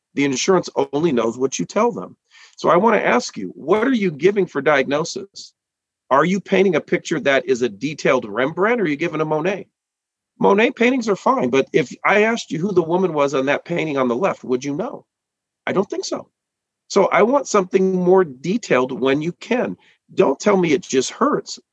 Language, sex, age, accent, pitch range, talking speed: English, male, 40-59, American, 145-205 Hz, 215 wpm